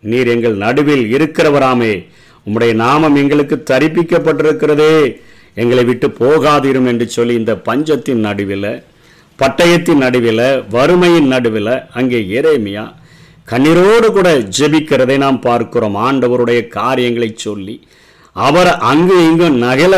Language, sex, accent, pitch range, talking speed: Tamil, male, native, 120-160 Hz, 100 wpm